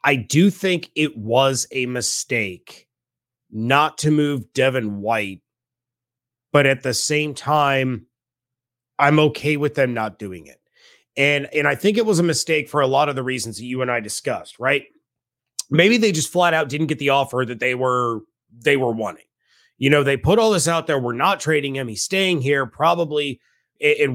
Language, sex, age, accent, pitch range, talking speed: English, male, 30-49, American, 125-160 Hz, 190 wpm